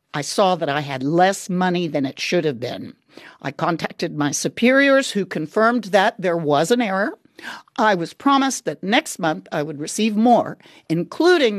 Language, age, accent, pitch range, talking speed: English, 50-69, American, 160-230 Hz, 175 wpm